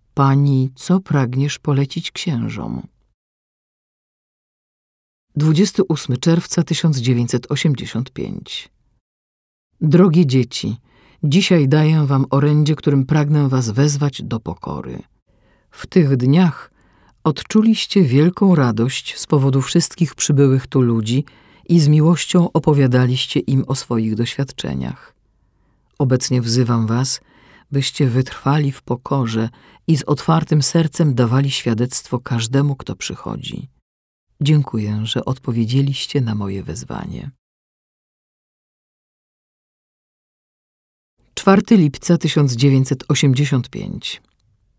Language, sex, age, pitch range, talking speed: Polish, female, 50-69, 120-155 Hz, 85 wpm